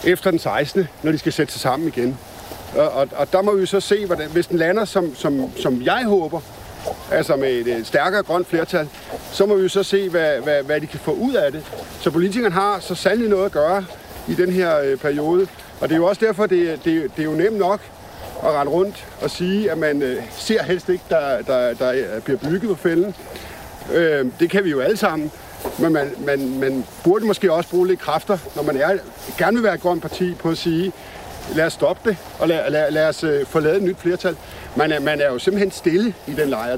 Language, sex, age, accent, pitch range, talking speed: Danish, male, 50-69, native, 155-200 Hz, 230 wpm